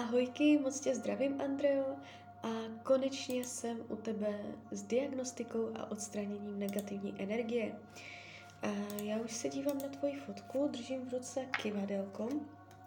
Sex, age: female, 20-39